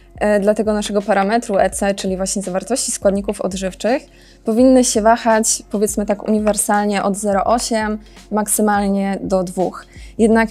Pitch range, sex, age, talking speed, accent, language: 195-225 Hz, female, 20-39, 120 wpm, native, Polish